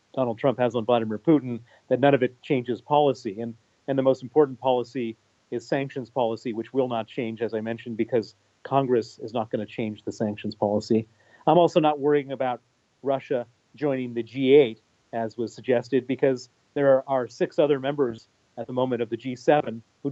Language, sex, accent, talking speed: English, male, American, 190 wpm